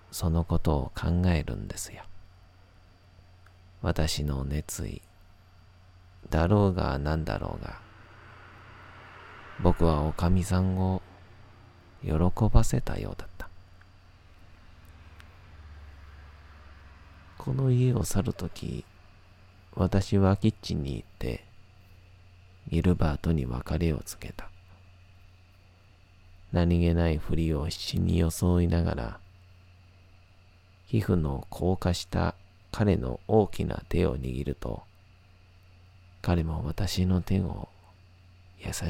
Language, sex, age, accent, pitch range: Japanese, male, 40-59, native, 85-95 Hz